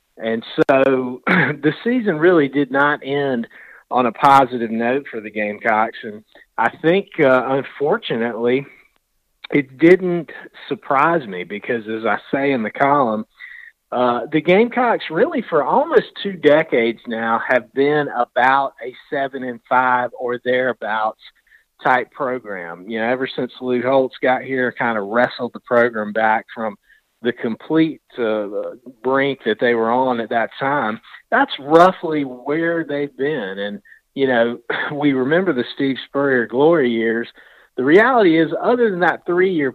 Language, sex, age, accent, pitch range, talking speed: English, male, 40-59, American, 115-150 Hz, 150 wpm